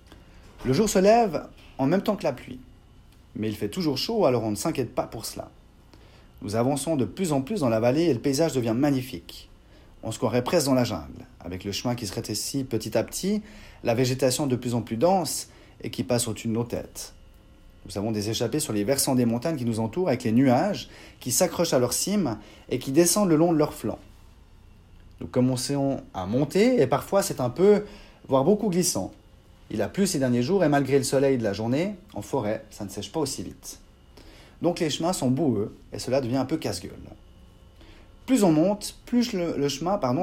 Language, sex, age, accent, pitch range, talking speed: French, male, 30-49, French, 105-150 Hz, 215 wpm